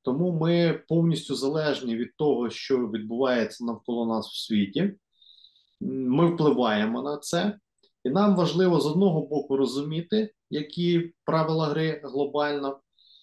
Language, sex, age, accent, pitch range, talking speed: Ukrainian, male, 30-49, native, 130-175 Hz, 120 wpm